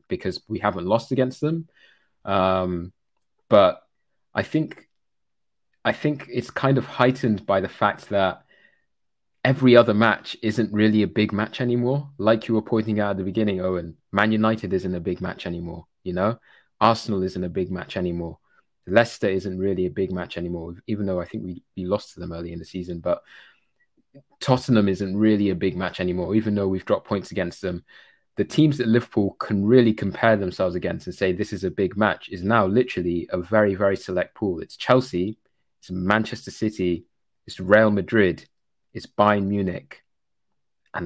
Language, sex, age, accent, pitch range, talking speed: English, male, 20-39, British, 95-115 Hz, 180 wpm